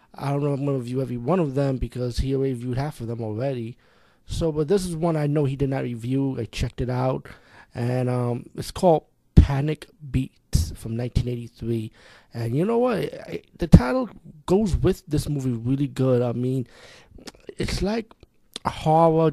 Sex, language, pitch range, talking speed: male, English, 125-150 Hz, 195 wpm